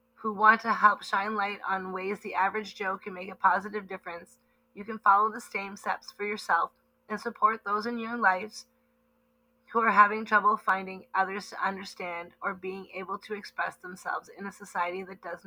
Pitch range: 190-230 Hz